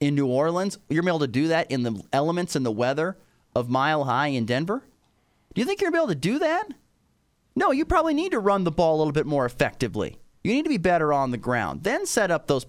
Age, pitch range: 30-49, 130-200 Hz